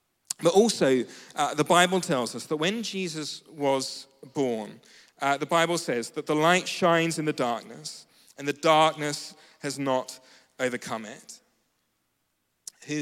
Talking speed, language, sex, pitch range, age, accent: 145 wpm, English, male, 130-170 Hz, 40-59, British